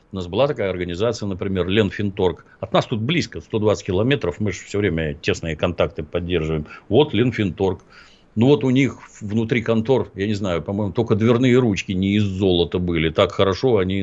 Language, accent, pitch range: Russian, native, 95-130 Hz